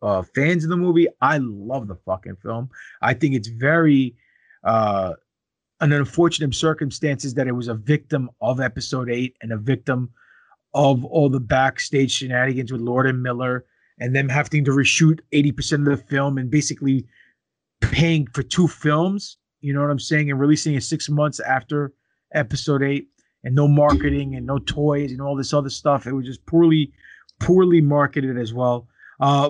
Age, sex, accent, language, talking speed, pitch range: 30-49, male, American, English, 175 wpm, 130-160 Hz